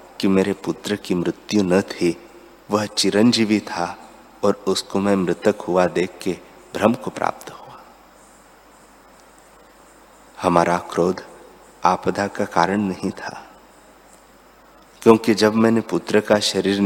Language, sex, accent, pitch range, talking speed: Hindi, male, native, 95-115 Hz, 120 wpm